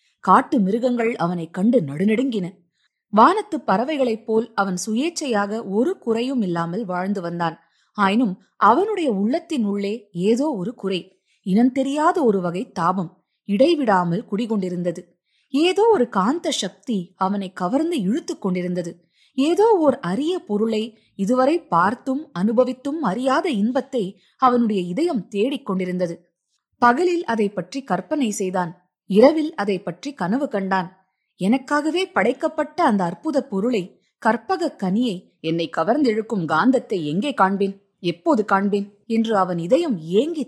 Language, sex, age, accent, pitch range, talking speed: Tamil, female, 20-39, native, 185-265 Hz, 115 wpm